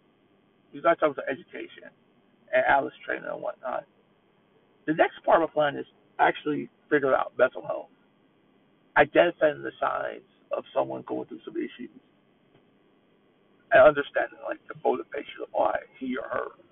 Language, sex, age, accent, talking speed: English, male, 60-79, American, 145 wpm